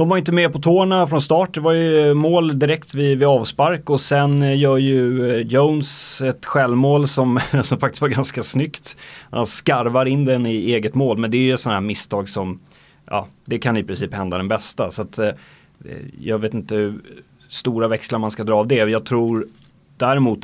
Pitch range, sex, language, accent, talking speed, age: 105-140 Hz, male, English, Swedish, 195 wpm, 30-49